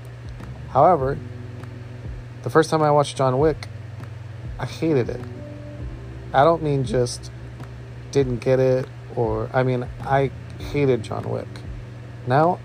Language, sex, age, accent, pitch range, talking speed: English, male, 30-49, American, 120-135 Hz, 125 wpm